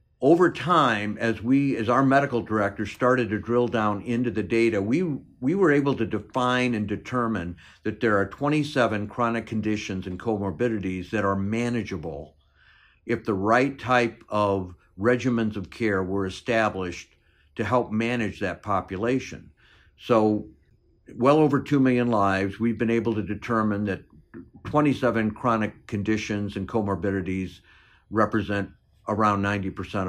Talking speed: 140 wpm